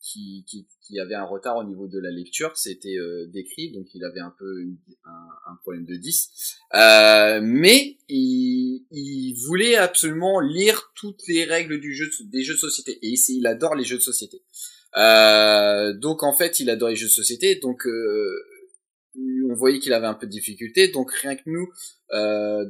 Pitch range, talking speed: 105-155 Hz, 195 wpm